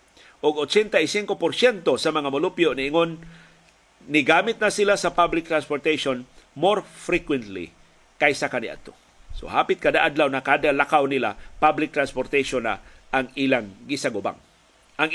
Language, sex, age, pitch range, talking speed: Filipino, male, 50-69, 140-185 Hz, 125 wpm